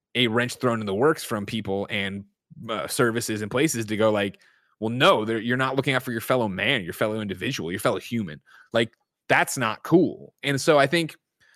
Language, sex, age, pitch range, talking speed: English, male, 20-39, 105-135 Hz, 210 wpm